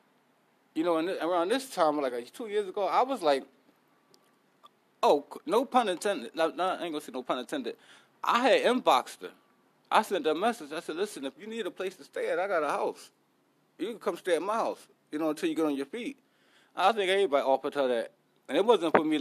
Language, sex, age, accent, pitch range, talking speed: English, male, 20-39, American, 140-185 Hz, 240 wpm